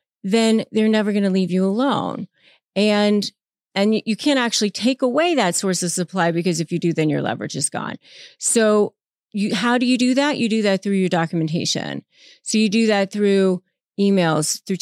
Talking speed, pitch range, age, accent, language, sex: 195 wpm, 185-240 Hz, 30-49, American, English, female